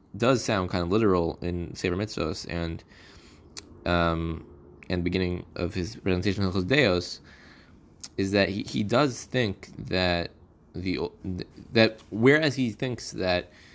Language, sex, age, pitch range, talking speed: English, male, 20-39, 85-105 Hz, 130 wpm